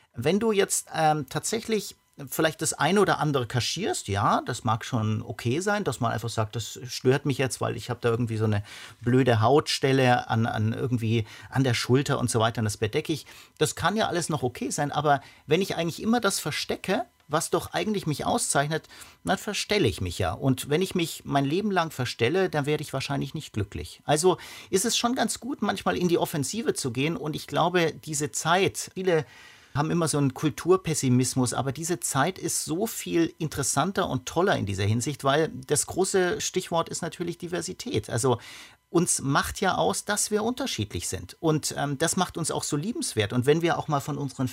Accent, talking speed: German, 205 wpm